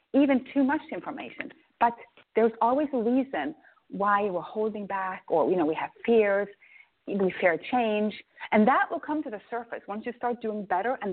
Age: 40-59